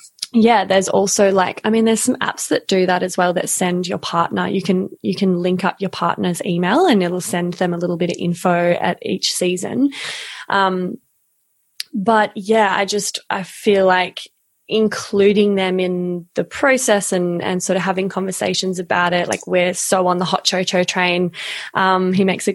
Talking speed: 190 wpm